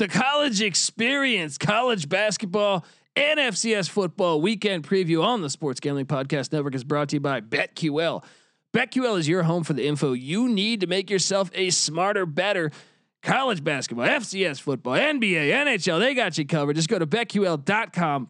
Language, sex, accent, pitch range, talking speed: English, male, American, 155-220 Hz, 165 wpm